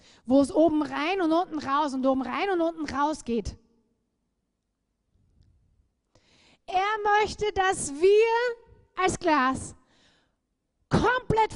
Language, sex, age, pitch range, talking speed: German, female, 30-49, 305-450 Hz, 110 wpm